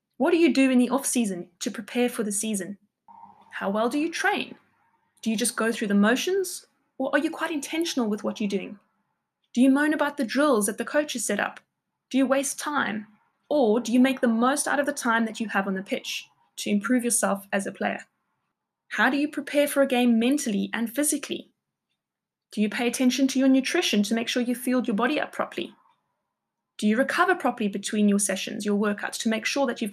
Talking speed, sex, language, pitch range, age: 220 wpm, female, English, 225-285 Hz, 10-29